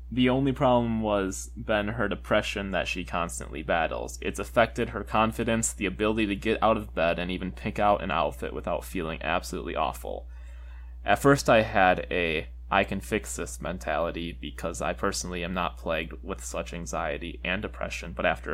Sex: male